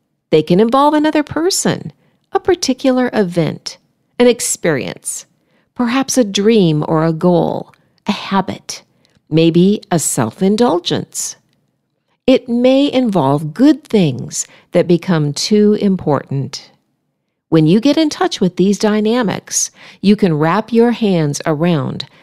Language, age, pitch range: English, 50-69, 160-245 Hz